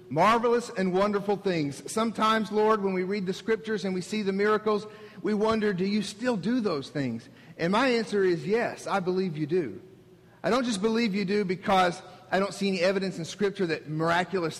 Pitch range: 185-225 Hz